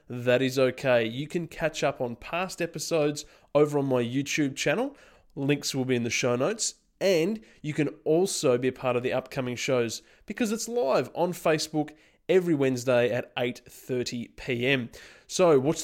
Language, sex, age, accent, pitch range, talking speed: English, male, 20-39, Australian, 130-160 Hz, 170 wpm